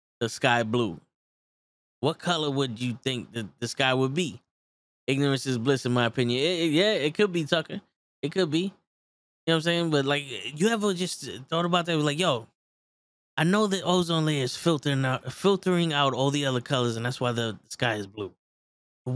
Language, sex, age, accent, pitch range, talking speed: English, male, 10-29, American, 120-175 Hz, 210 wpm